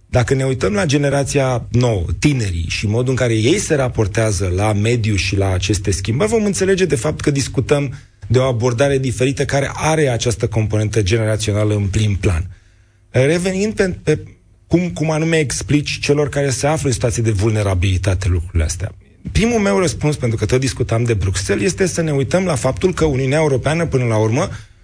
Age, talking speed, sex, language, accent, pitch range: 30-49, 185 wpm, male, Romanian, native, 105-150 Hz